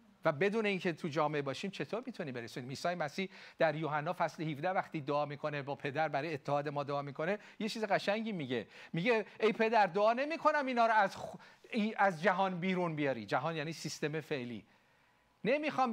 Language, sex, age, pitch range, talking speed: Persian, male, 40-59, 145-200 Hz, 175 wpm